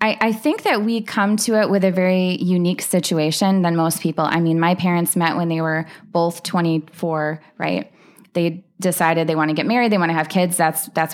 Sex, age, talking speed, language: female, 20-39, 215 wpm, English